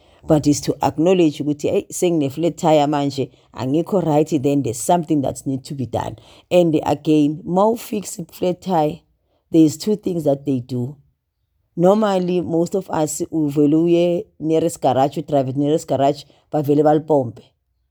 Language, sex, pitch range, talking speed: English, female, 145-175 Hz, 170 wpm